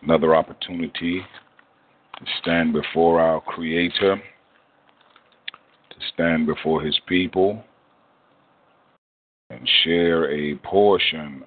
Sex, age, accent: male, 40-59, American